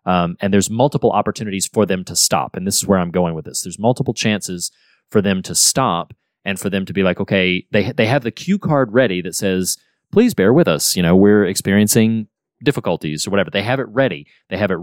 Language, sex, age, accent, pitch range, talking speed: English, male, 30-49, American, 95-125 Hz, 240 wpm